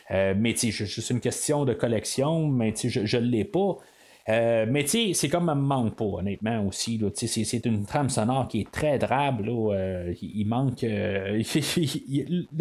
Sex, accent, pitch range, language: male, Canadian, 115-160 Hz, French